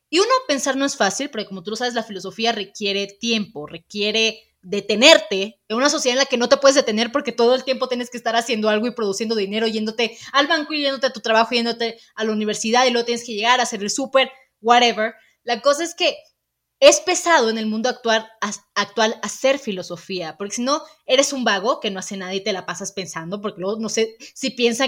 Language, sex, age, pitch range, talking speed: Spanish, female, 20-39, 210-275 Hz, 225 wpm